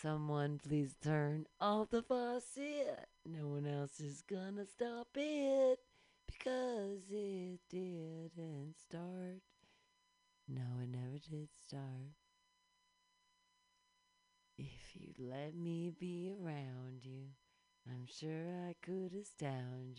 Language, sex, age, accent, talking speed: English, female, 40-59, American, 100 wpm